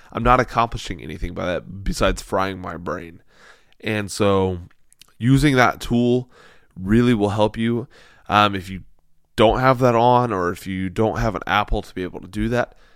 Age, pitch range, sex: 20-39, 95-125 Hz, male